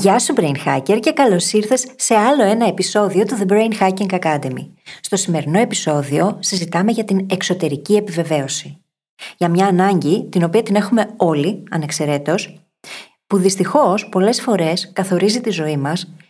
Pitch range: 165-215 Hz